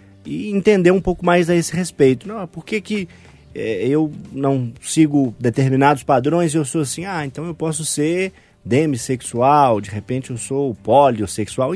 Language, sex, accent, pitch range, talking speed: Portuguese, male, Brazilian, 110-150 Hz, 170 wpm